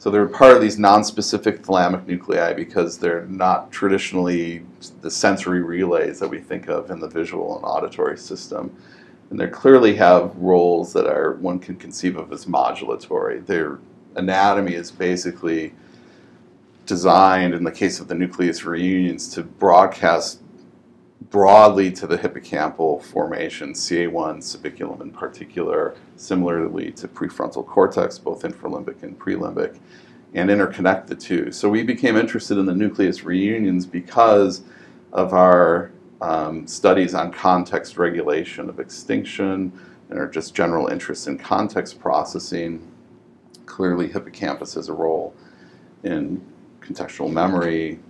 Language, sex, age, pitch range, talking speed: English, male, 40-59, 85-100 Hz, 135 wpm